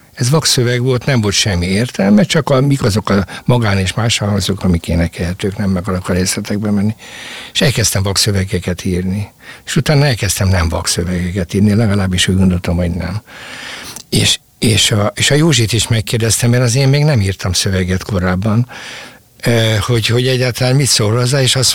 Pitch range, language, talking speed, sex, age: 100-120 Hz, Hungarian, 170 wpm, male, 60-79